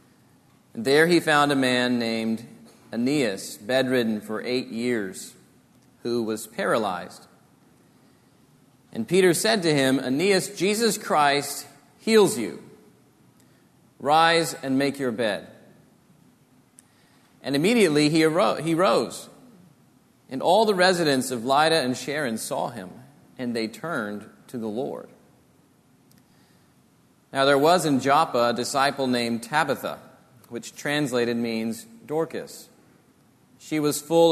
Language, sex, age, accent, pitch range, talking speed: English, male, 40-59, American, 120-155 Hz, 115 wpm